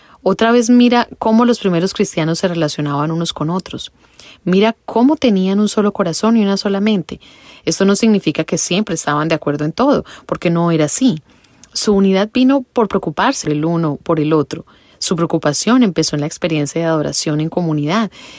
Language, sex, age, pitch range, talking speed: English, female, 30-49, 155-205 Hz, 185 wpm